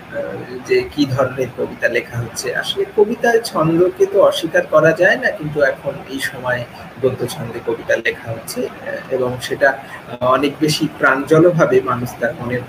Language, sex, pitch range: Bengali, male, 125-200 Hz